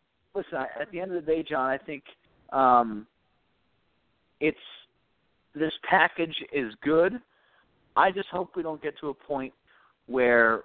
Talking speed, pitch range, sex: 145 wpm, 120-145 Hz, male